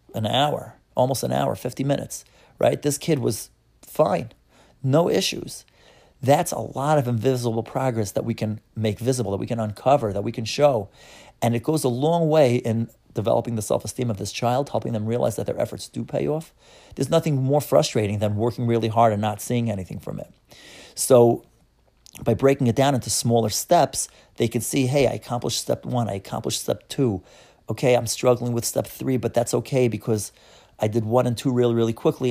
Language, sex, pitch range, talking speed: English, male, 110-130 Hz, 200 wpm